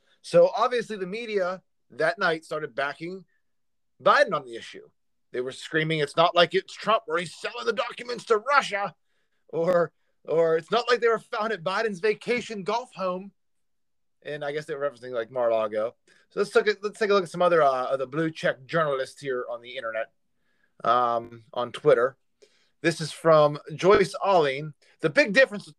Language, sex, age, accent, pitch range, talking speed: English, male, 30-49, American, 145-205 Hz, 185 wpm